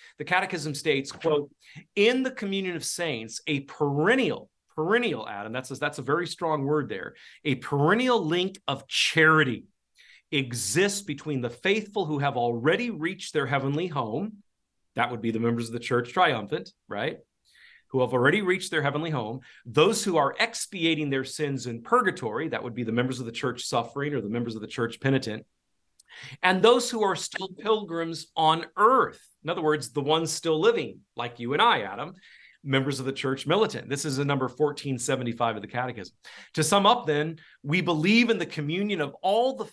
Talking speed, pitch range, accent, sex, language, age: 185 wpm, 130-185 Hz, American, male, English, 40-59